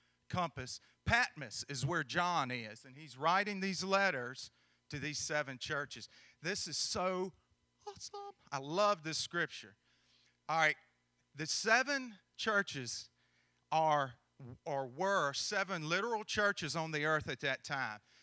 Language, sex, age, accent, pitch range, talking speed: English, male, 40-59, American, 130-190 Hz, 130 wpm